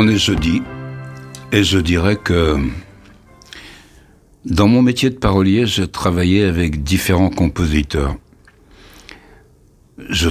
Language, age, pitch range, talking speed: French, 60-79, 80-100 Hz, 105 wpm